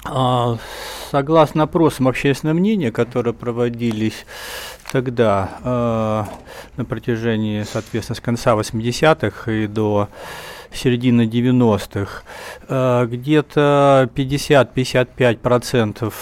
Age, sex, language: 40-59, male, Russian